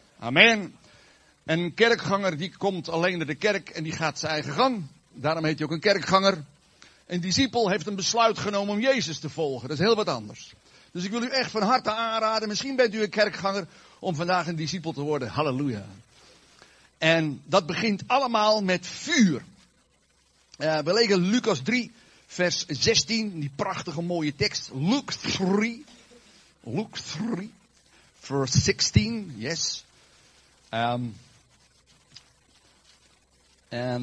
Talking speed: 145 wpm